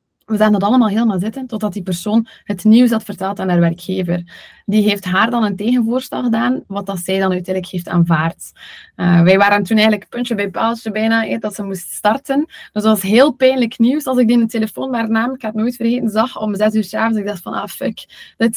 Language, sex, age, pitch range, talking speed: Dutch, female, 20-39, 195-240 Hz, 240 wpm